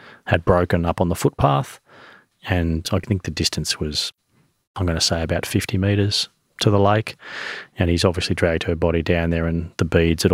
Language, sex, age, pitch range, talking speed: English, male, 30-49, 90-100 Hz, 195 wpm